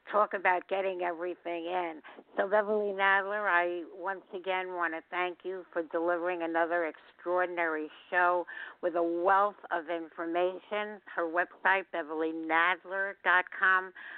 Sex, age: female, 60-79